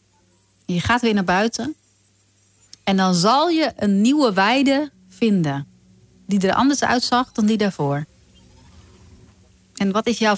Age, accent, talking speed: 30-49, Dutch, 140 wpm